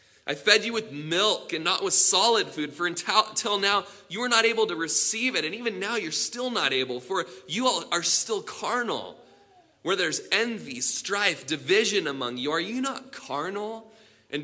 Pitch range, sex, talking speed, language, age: 150-225 Hz, male, 185 wpm, English, 20-39